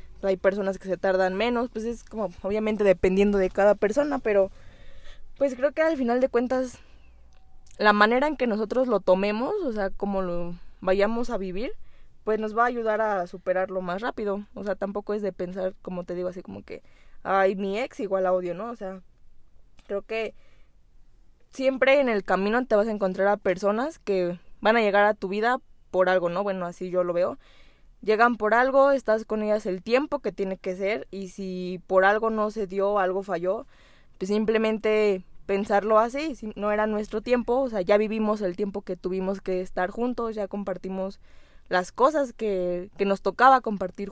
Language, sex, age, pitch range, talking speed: Spanish, female, 20-39, 190-225 Hz, 195 wpm